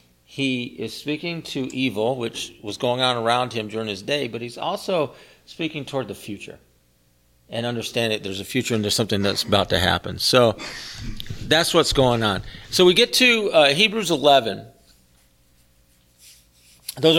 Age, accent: 40-59, American